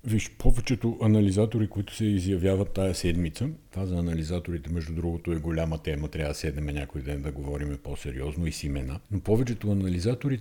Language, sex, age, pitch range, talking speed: Bulgarian, male, 50-69, 85-110 Hz, 180 wpm